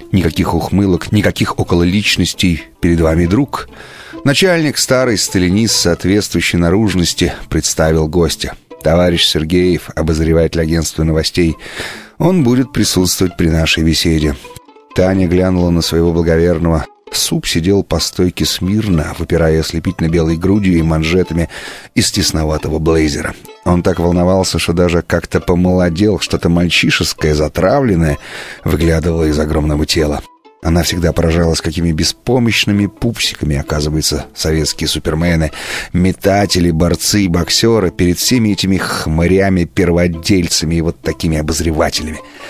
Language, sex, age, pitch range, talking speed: Russian, male, 30-49, 80-95 Hz, 115 wpm